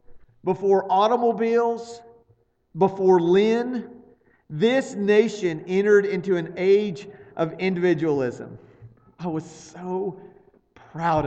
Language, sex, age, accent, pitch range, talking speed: English, male, 40-59, American, 170-205 Hz, 85 wpm